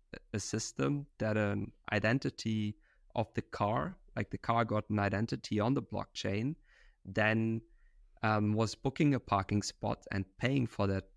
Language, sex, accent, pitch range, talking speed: English, male, German, 105-120 Hz, 150 wpm